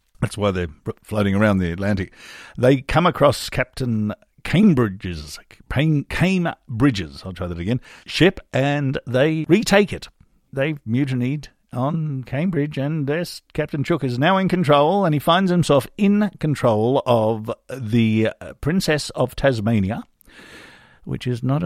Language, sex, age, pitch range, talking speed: English, male, 50-69, 95-140 Hz, 135 wpm